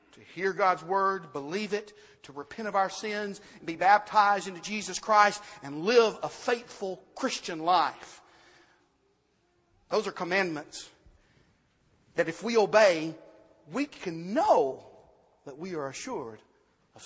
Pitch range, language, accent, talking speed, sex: 160-200 Hz, English, American, 125 wpm, male